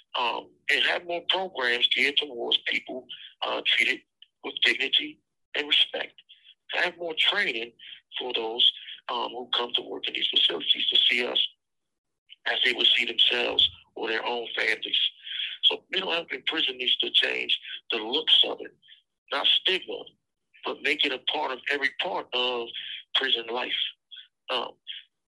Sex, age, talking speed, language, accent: male, 50-69, 155 wpm, English, American